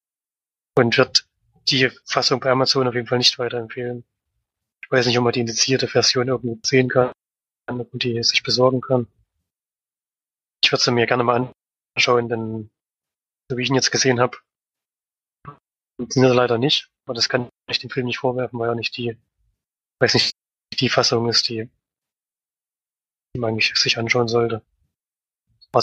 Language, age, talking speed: German, 20-39, 155 wpm